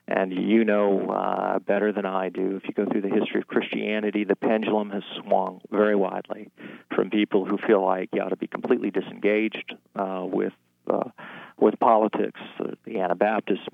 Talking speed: 180 wpm